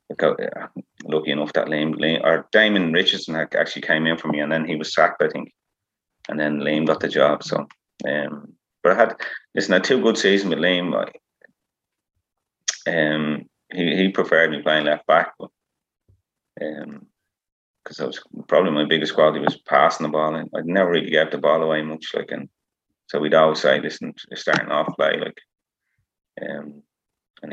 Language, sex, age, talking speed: English, male, 30-49, 180 wpm